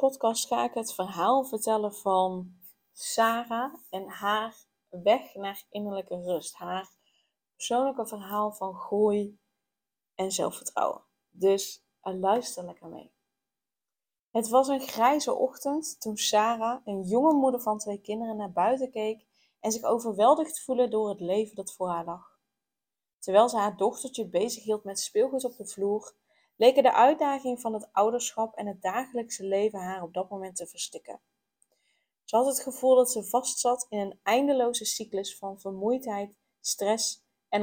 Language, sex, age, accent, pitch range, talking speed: Dutch, female, 20-39, Dutch, 195-245 Hz, 150 wpm